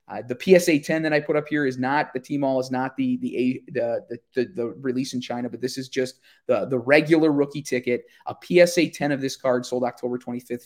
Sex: male